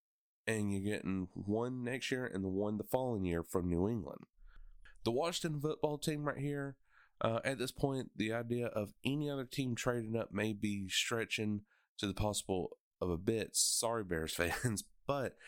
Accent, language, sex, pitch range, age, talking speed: American, English, male, 100-130 Hz, 30-49, 180 wpm